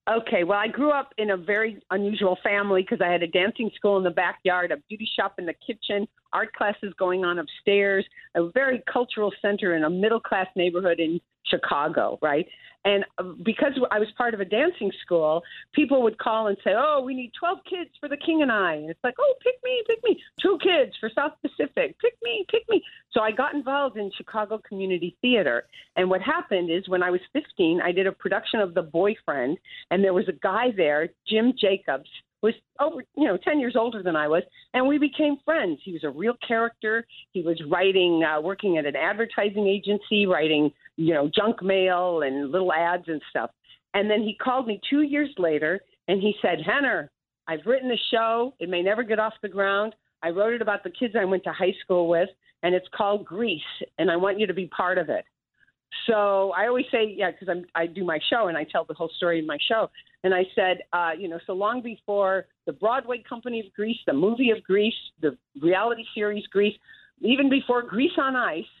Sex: female